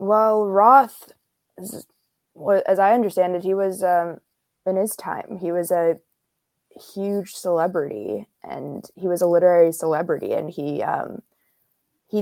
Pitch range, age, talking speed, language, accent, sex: 155-190 Hz, 20-39, 135 wpm, English, American, female